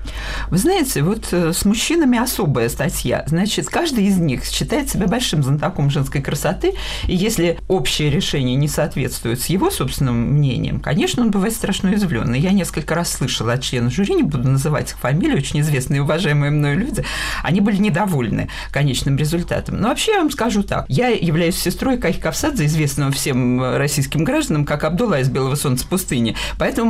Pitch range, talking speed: 140-195 Hz, 170 wpm